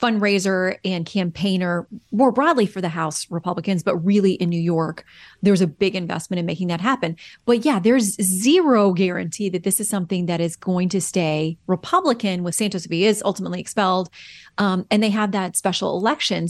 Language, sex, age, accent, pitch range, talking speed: English, female, 30-49, American, 180-230 Hz, 180 wpm